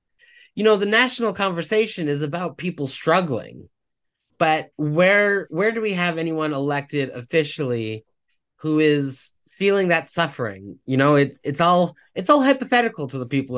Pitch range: 120-170 Hz